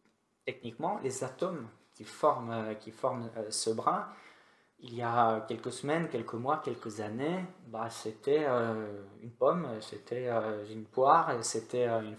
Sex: male